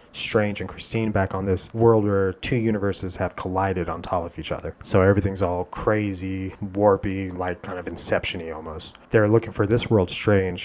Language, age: English, 30-49